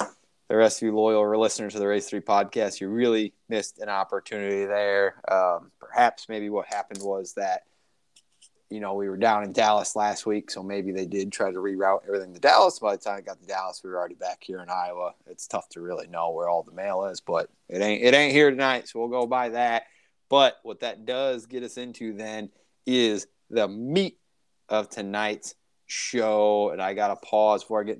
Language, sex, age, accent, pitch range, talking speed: English, male, 20-39, American, 105-125 Hz, 215 wpm